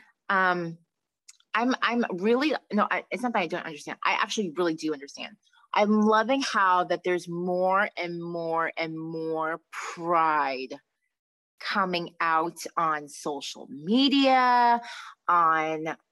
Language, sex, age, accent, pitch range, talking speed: English, female, 30-49, American, 175-245 Hz, 125 wpm